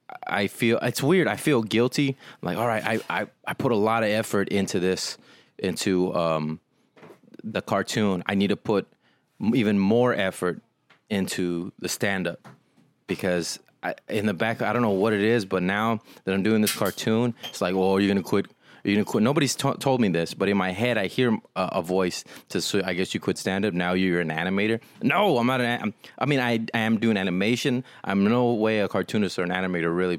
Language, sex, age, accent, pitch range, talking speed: English, male, 30-49, American, 90-120 Hz, 215 wpm